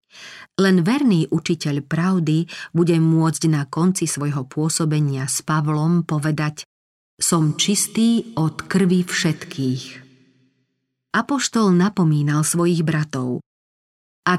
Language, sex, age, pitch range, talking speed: Slovak, female, 40-59, 150-180 Hz, 95 wpm